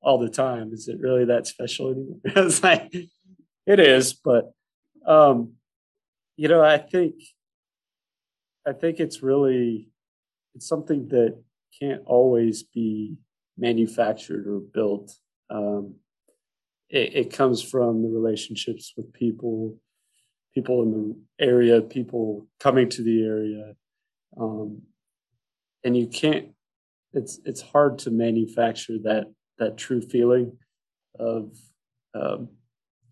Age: 40-59